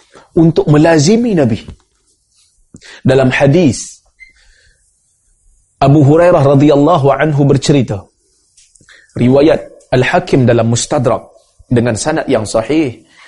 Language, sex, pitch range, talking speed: Malay, male, 125-170 Hz, 80 wpm